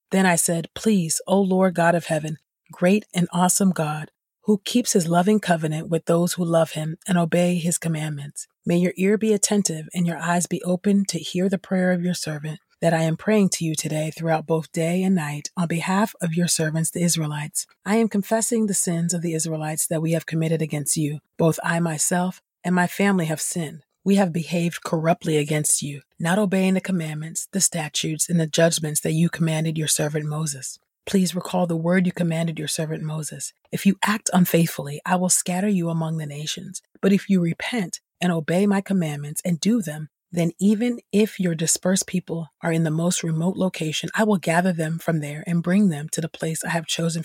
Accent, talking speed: American, 210 wpm